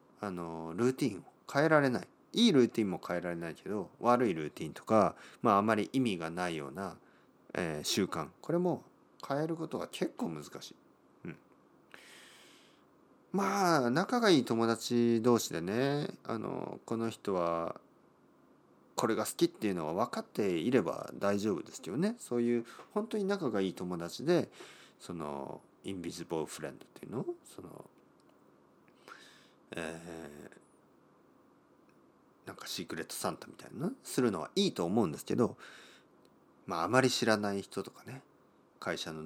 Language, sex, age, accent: Japanese, male, 40-59, native